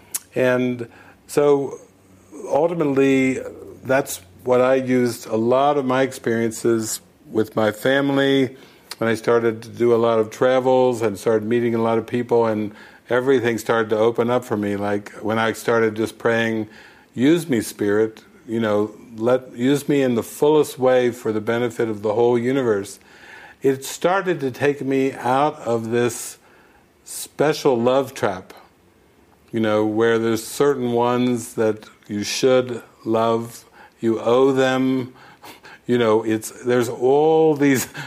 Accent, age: American, 60-79